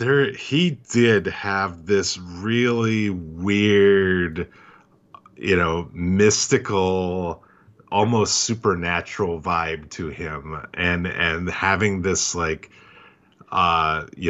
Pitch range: 90-115 Hz